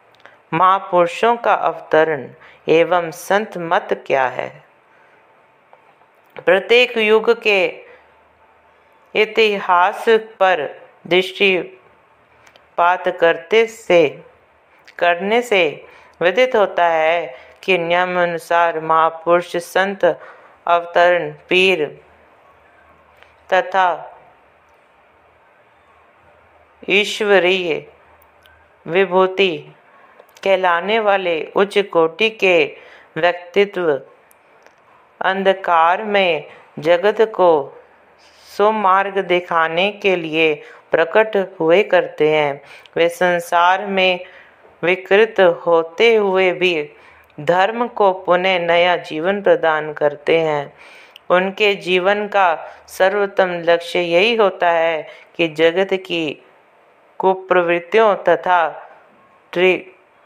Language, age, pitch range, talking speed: Hindi, 50-69, 170-205 Hz, 75 wpm